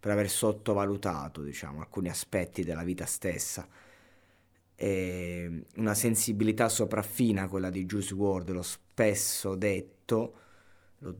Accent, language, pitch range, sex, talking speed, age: native, Italian, 95-115 Hz, male, 115 wpm, 20-39